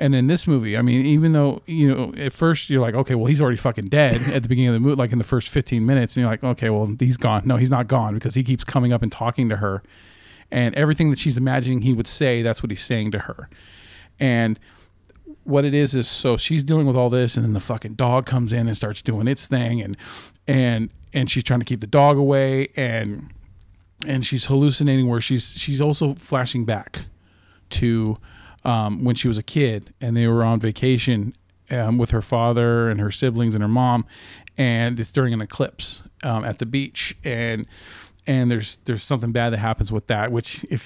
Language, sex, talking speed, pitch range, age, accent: English, male, 225 wpm, 110-130 Hz, 40-59, American